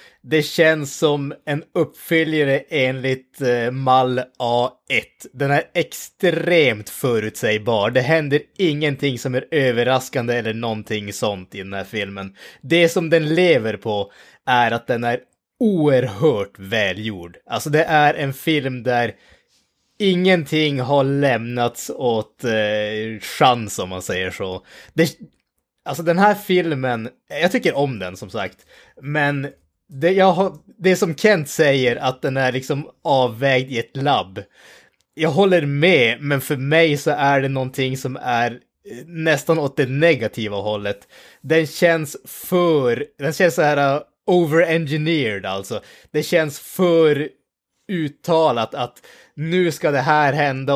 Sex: male